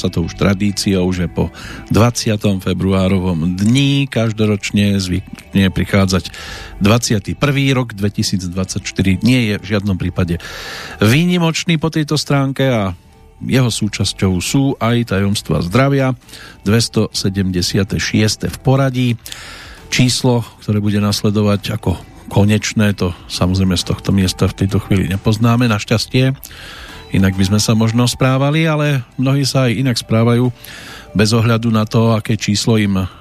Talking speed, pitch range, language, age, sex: 125 wpm, 95-125 Hz, Slovak, 50-69, male